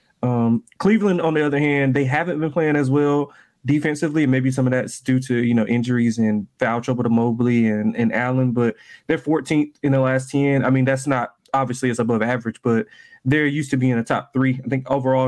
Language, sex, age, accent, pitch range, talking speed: English, male, 20-39, American, 120-150 Hz, 220 wpm